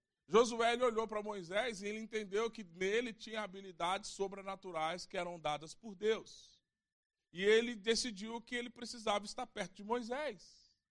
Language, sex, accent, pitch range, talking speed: Portuguese, male, Brazilian, 210-275 Hz, 155 wpm